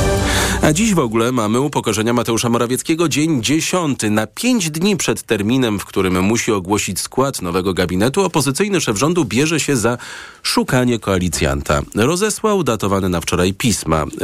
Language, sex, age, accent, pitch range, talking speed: Polish, male, 40-59, native, 85-130 Hz, 145 wpm